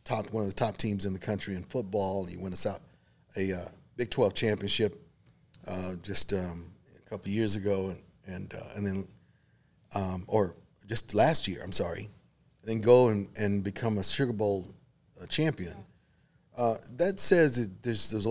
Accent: American